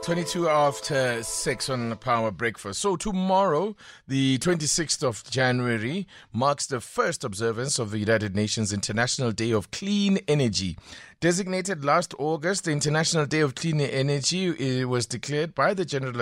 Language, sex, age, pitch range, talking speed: English, male, 30-49, 110-140 Hz, 150 wpm